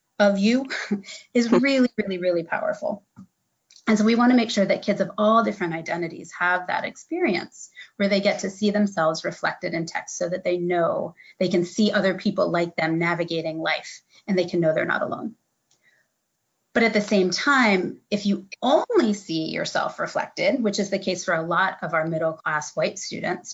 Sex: female